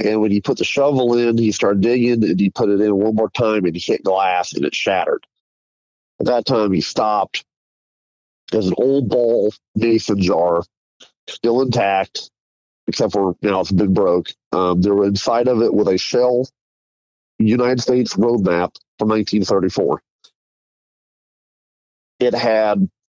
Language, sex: English, male